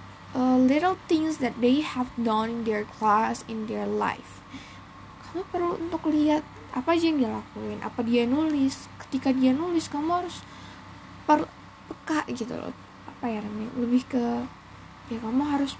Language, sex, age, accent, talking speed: Indonesian, female, 10-29, native, 160 wpm